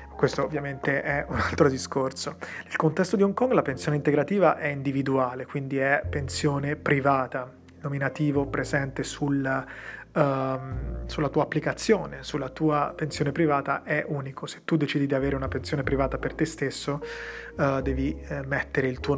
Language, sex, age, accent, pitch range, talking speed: Italian, male, 30-49, native, 130-145 Hz, 160 wpm